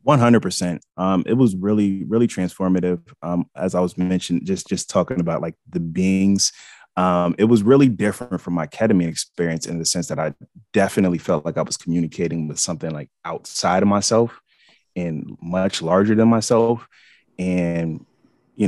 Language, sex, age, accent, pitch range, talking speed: English, male, 30-49, American, 85-100 Hz, 170 wpm